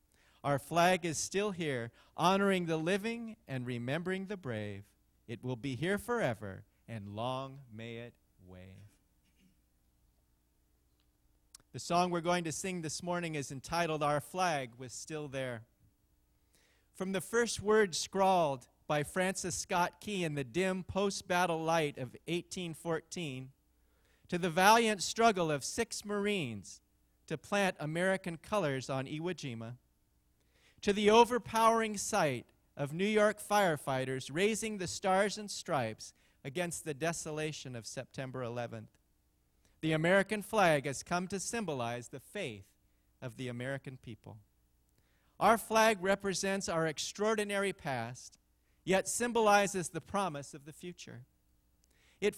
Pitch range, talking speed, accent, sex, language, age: 115-190 Hz, 130 wpm, American, male, English, 30-49